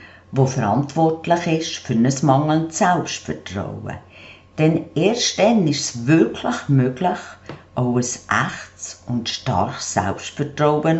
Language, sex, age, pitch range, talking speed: German, female, 50-69, 110-160 Hz, 110 wpm